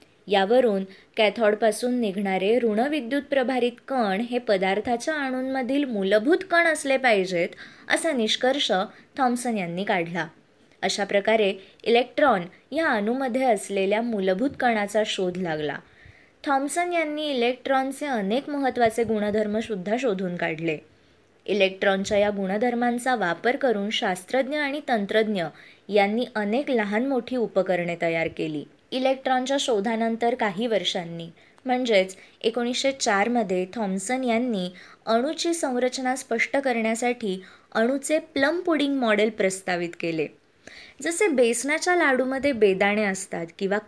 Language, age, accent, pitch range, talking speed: Marathi, 20-39, native, 195-255 Hz, 105 wpm